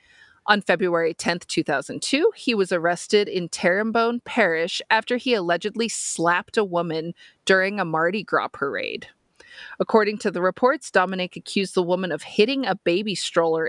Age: 30-49